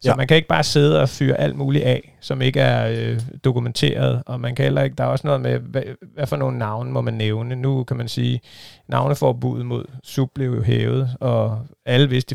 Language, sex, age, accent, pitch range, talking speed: Danish, male, 30-49, native, 115-130 Hz, 235 wpm